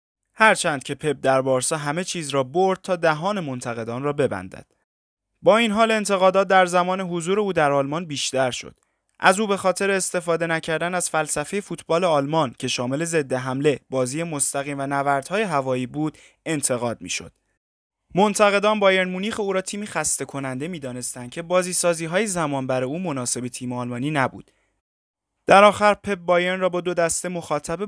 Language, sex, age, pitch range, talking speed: Persian, male, 20-39, 135-185 Hz, 165 wpm